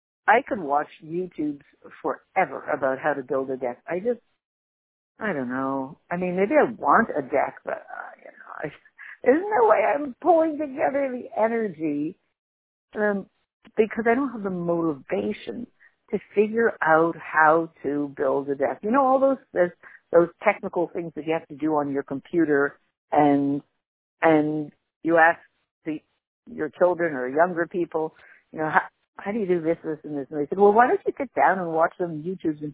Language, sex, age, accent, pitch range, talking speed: English, female, 60-79, American, 155-235 Hz, 185 wpm